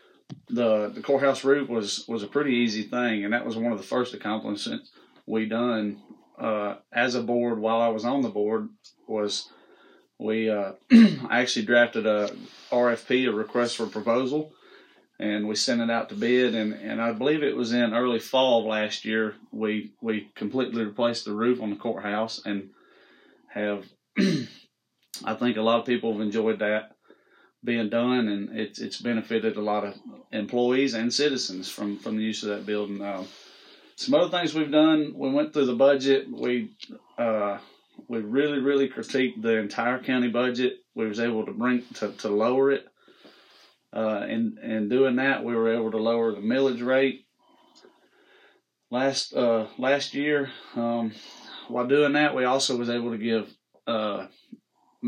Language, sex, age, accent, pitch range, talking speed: English, male, 30-49, American, 110-130 Hz, 170 wpm